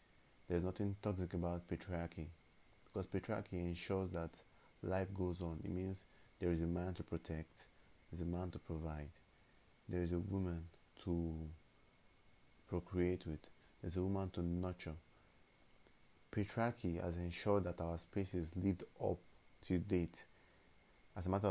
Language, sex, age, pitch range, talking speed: English, male, 30-49, 85-100 Hz, 145 wpm